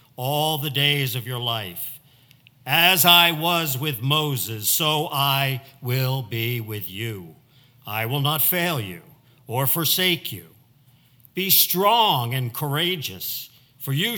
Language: English